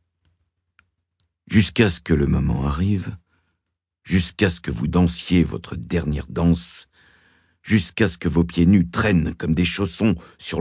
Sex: male